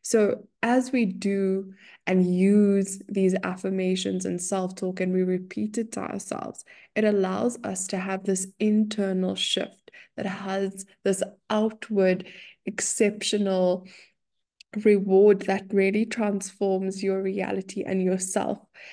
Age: 20-39